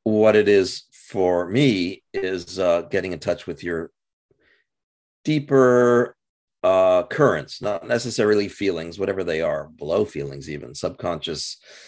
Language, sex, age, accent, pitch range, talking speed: English, male, 50-69, American, 90-120 Hz, 125 wpm